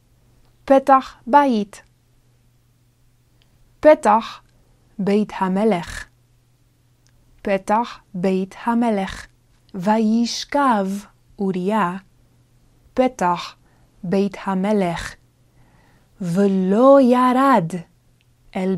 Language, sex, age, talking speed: Hebrew, female, 20-39, 50 wpm